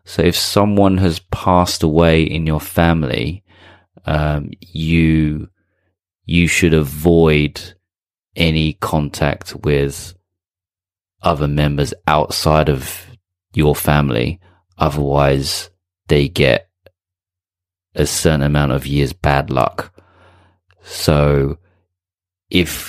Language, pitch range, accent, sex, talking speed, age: English, 75-90 Hz, British, male, 90 wpm, 30-49